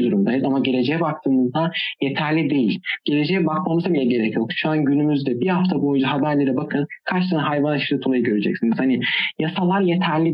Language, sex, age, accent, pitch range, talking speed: Turkish, male, 40-59, native, 135-170 Hz, 165 wpm